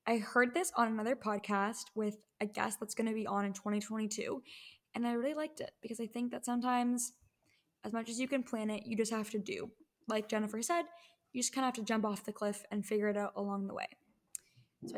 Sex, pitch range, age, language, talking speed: female, 205-245 Hz, 10-29, English, 235 wpm